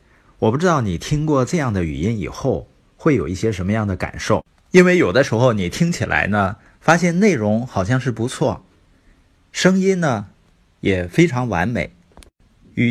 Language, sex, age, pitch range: Chinese, male, 50-69, 90-135 Hz